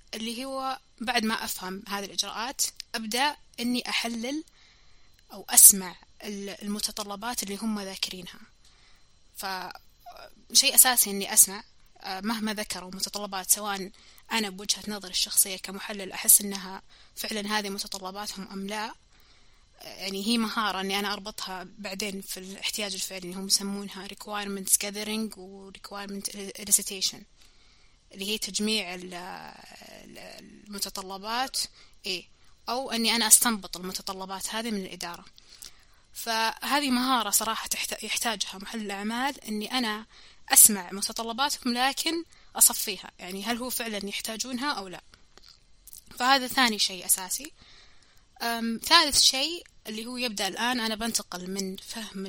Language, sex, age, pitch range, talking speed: Arabic, female, 20-39, 195-230 Hz, 110 wpm